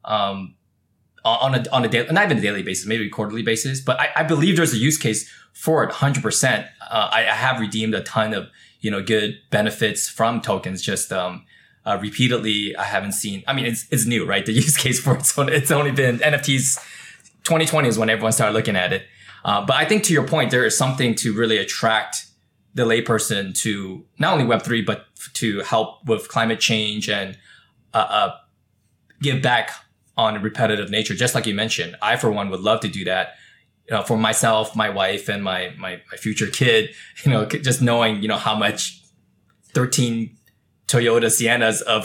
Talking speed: 205 wpm